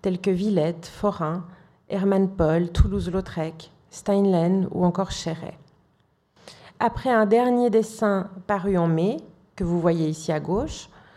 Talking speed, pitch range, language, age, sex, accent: 130 wpm, 175-210 Hz, French, 40-59, female, French